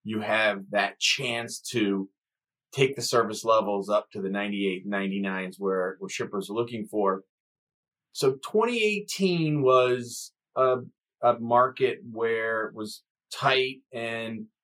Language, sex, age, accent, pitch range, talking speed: English, male, 30-49, American, 110-150 Hz, 140 wpm